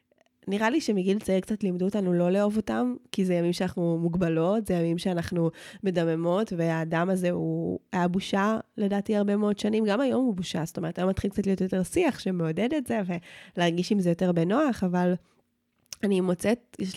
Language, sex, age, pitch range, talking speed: Hebrew, female, 20-39, 175-210 Hz, 185 wpm